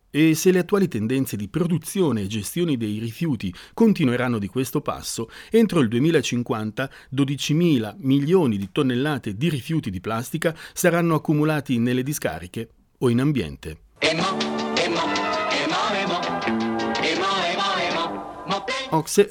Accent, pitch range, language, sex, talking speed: native, 105-160 Hz, Italian, male, 105 wpm